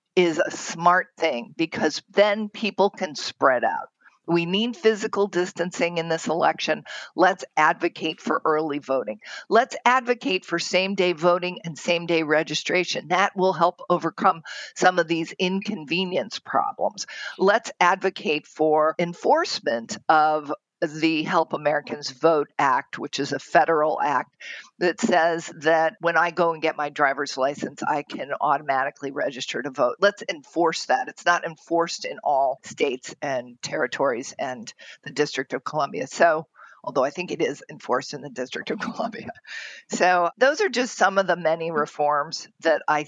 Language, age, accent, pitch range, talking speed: English, 50-69, American, 160-200 Hz, 155 wpm